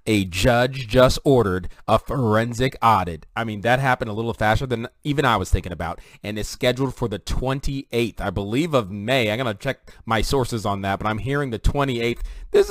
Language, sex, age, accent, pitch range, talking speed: English, male, 30-49, American, 110-135 Hz, 205 wpm